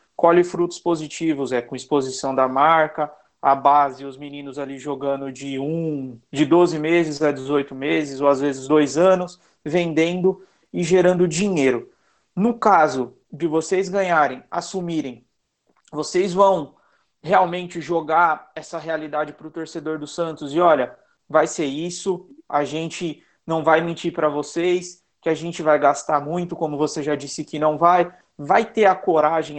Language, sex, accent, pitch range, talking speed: Portuguese, male, Brazilian, 145-175 Hz, 155 wpm